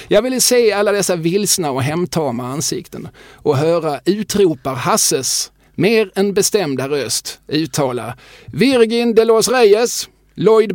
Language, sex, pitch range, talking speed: Swedish, male, 130-185 Hz, 130 wpm